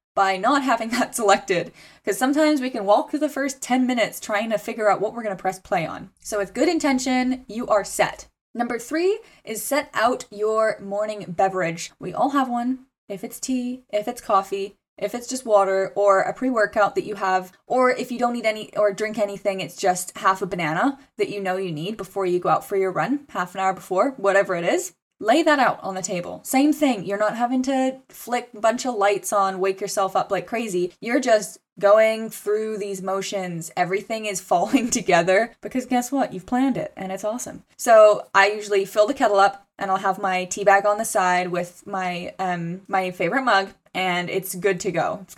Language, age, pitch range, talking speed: English, 10-29, 190-245 Hz, 215 wpm